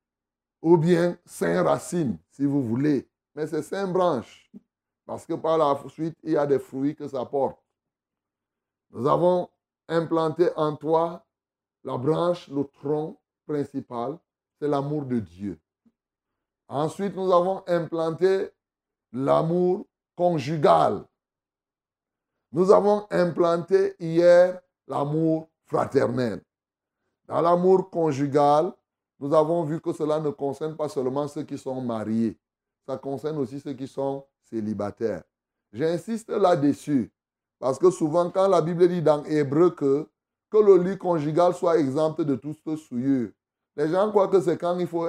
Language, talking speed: French, 135 wpm